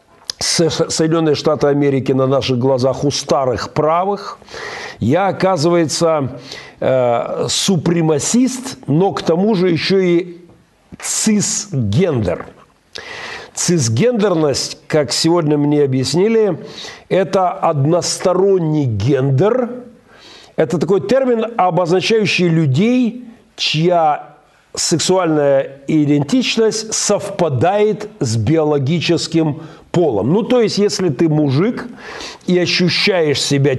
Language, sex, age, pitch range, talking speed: Russian, male, 50-69, 145-195 Hz, 85 wpm